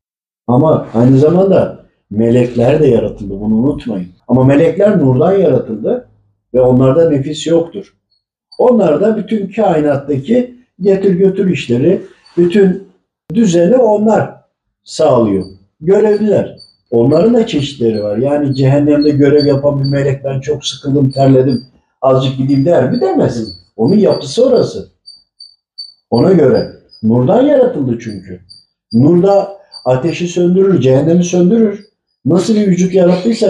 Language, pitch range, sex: Turkish, 130-185 Hz, male